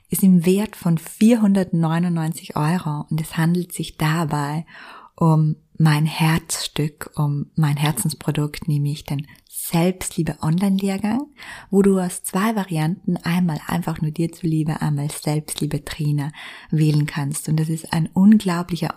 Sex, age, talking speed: female, 20-39, 125 wpm